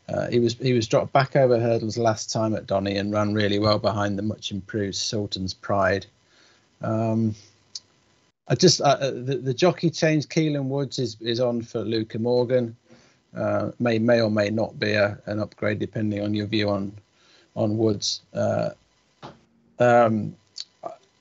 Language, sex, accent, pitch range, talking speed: English, male, British, 105-125 Hz, 165 wpm